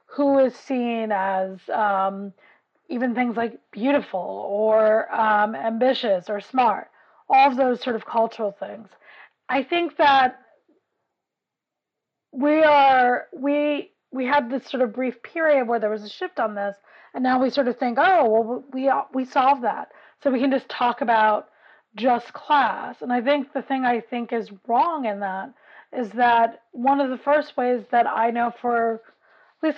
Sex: female